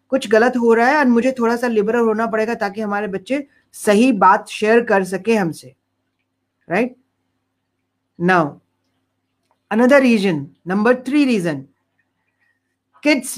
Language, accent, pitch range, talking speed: Hindi, native, 195-255 Hz, 130 wpm